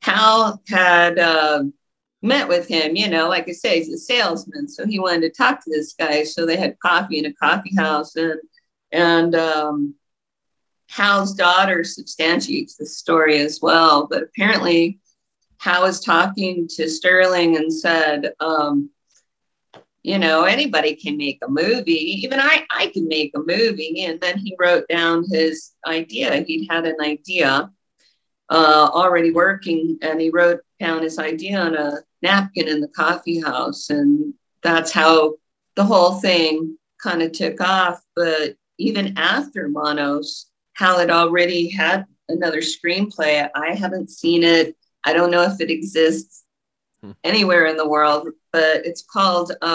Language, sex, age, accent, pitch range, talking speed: English, female, 50-69, American, 160-185 Hz, 155 wpm